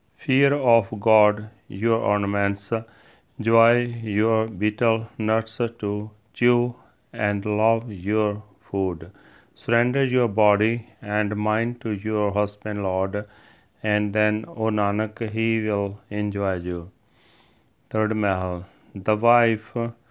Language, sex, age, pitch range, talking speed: Punjabi, male, 40-59, 105-115 Hz, 105 wpm